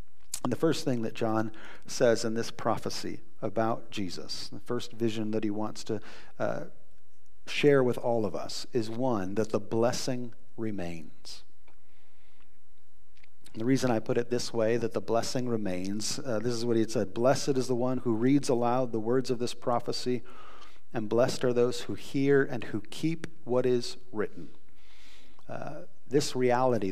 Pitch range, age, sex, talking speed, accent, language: 105-130 Hz, 40-59, male, 170 wpm, American, English